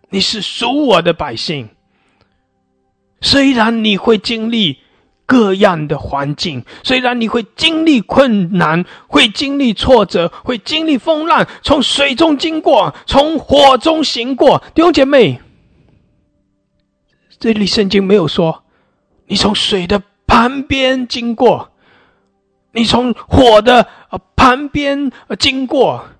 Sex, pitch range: male, 180-280 Hz